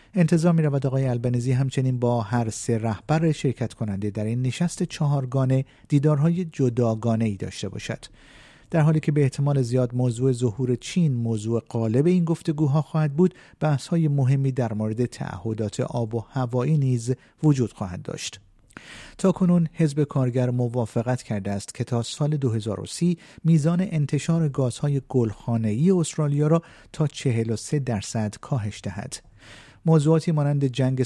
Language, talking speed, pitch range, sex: Persian, 145 wpm, 115-150 Hz, male